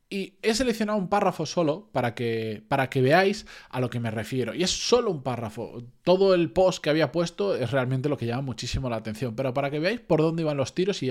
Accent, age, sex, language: Spanish, 20-39, male, Spanish